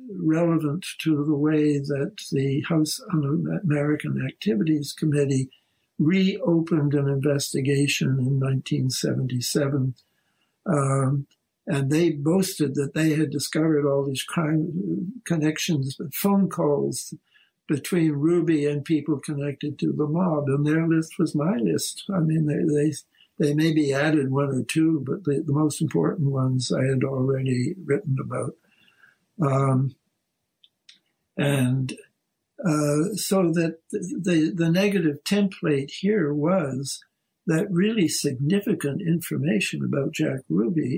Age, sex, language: 60-79, male, English